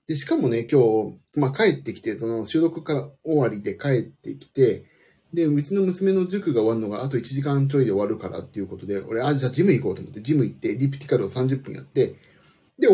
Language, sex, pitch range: Japanese, male, 110-155 Hz